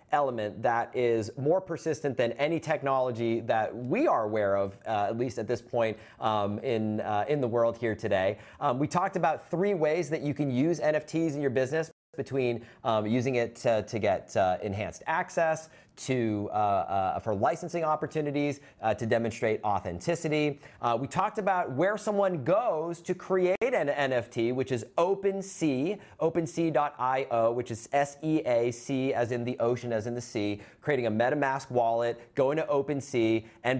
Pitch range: 120-165 Hz